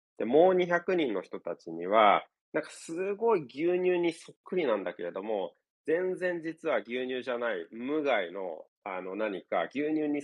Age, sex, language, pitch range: 30-49, male, Japanese, 130-185 Hz